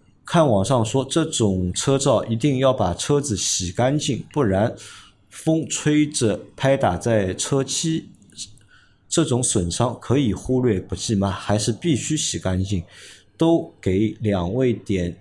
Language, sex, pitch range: Chinese, male, 100-135 Hz